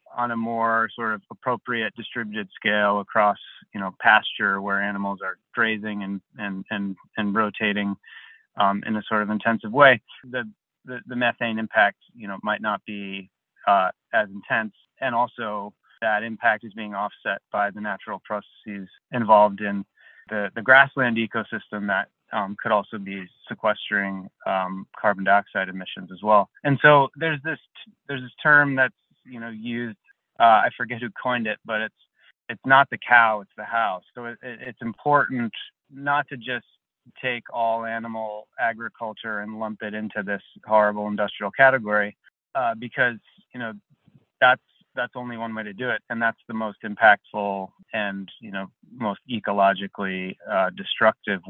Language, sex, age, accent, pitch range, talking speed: English, male, 30-49, American, 100-120 Hz, 160 wpm